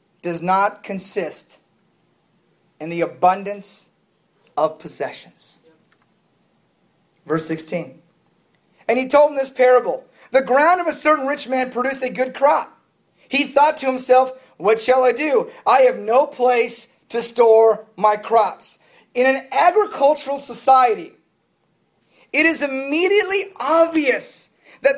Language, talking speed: English, 125 wpm